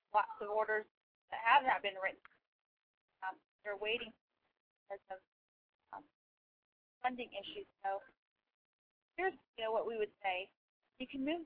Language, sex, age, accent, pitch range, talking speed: English, female, 30-49, American, 195-240 Hz, 140 wpm